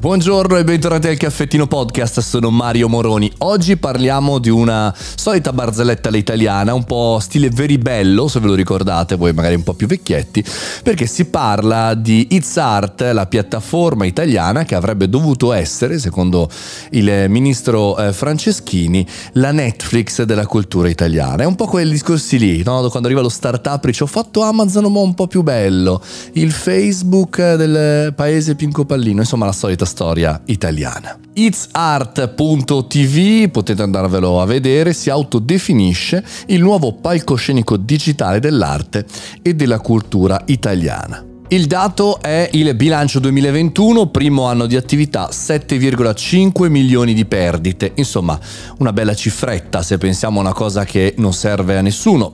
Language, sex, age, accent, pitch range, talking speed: Italian, male, 30-49, native, 100-150 Hz, 145 wpm